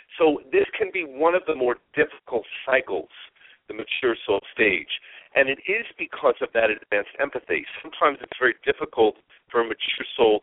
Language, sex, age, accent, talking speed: English, male, 50-69, American, 175 wpm